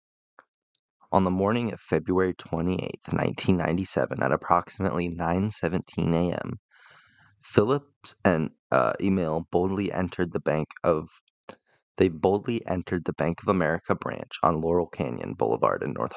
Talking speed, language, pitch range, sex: 125 wpm, English, 85-95 Hz, male